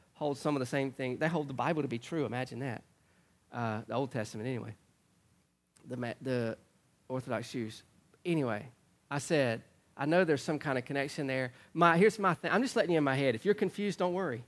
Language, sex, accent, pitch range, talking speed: English, male, American, 130-165 Hz, 210 wpm